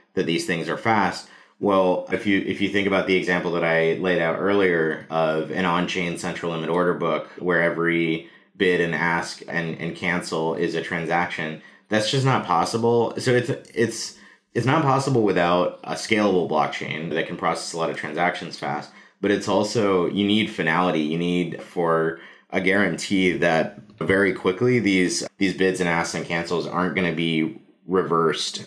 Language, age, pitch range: English, 30-49, 85-100 Hz